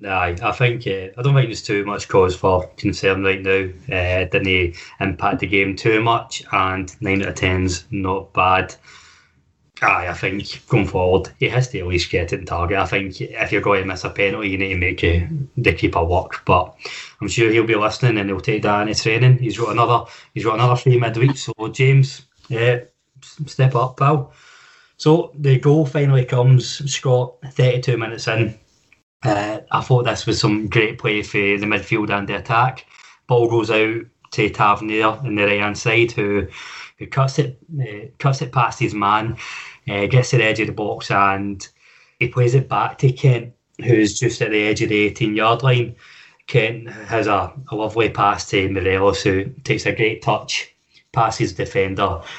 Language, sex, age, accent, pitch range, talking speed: English, male, 20-39, British, 100-125 Hz, 195 wpm